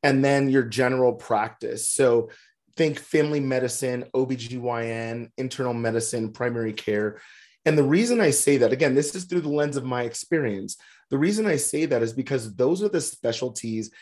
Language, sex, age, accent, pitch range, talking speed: English, male, 30-49, American, 110-140 Hz, 170 wpm